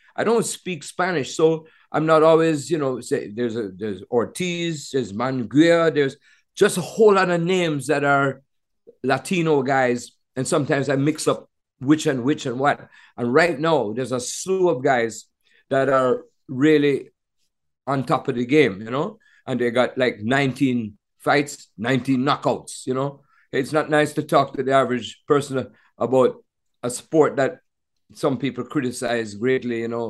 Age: 50-69